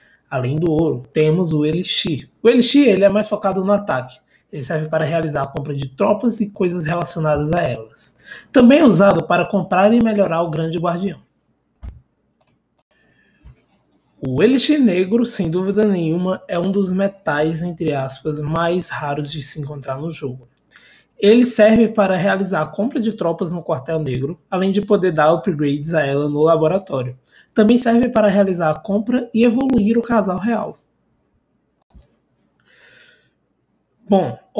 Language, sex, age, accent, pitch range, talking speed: Portuguese, male, 20-39, Brazilian, 150-215 Hz, 150 wpm